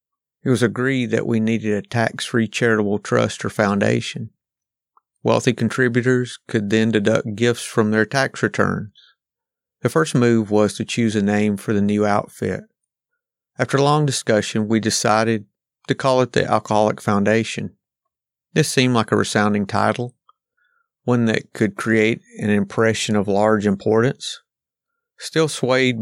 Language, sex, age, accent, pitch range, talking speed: English, male, 50-69, American, 105-125 Hz, 145 wpm